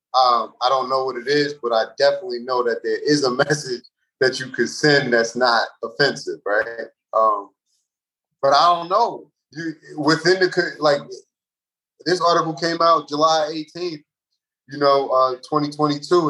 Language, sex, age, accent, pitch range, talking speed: English, male, 30-49, American, 130-160 Hz, 155 wpm